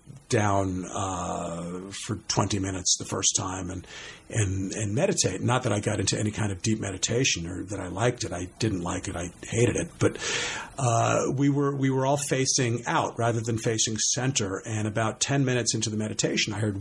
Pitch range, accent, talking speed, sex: 105-130 Hz, American, 200 wpm, male